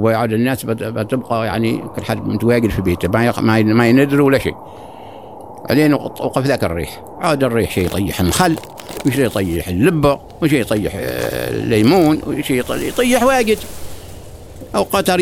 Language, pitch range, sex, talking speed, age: Arabic, 100-145 Hz, male, 145 wpm, 60-79